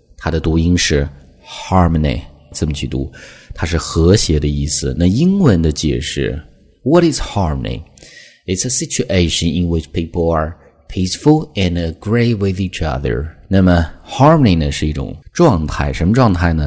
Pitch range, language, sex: 75-90 Hz, Chinese, male